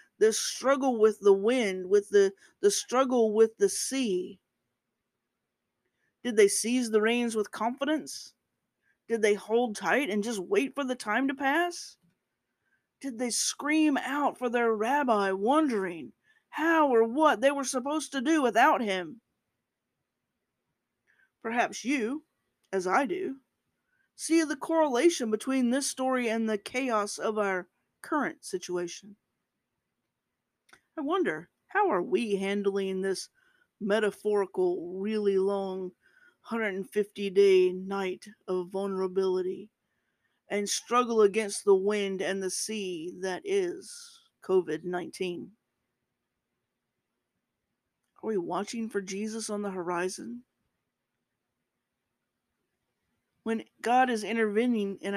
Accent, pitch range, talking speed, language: American, 195-275 Hz, 115 wpm, English